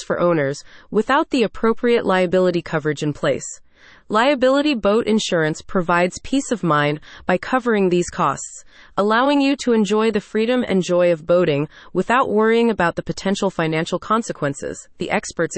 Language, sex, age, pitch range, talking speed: English, female, 30-49, 170-240 Hz, 150 wpm